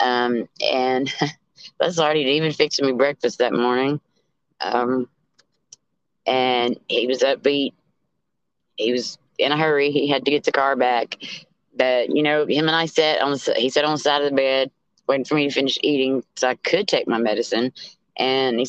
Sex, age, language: female, 30-49, English